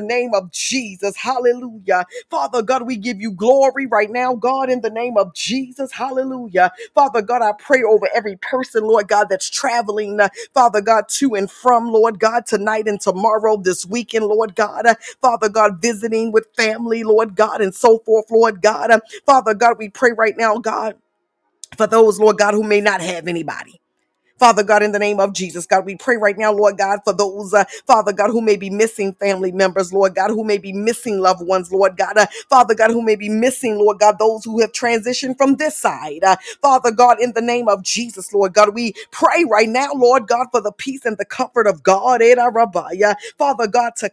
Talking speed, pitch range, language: 210 wpm, 195-240 Hz, English